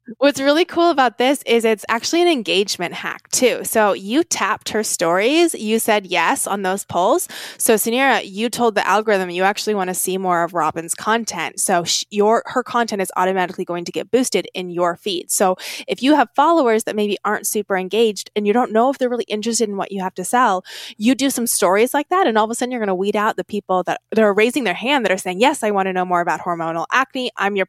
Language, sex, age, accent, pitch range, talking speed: English, female, 20-39, American, 185-235 Hz, 245 wpm